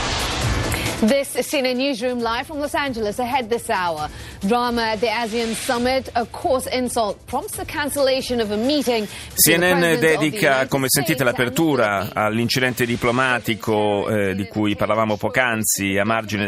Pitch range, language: 110-150 Hz, Italian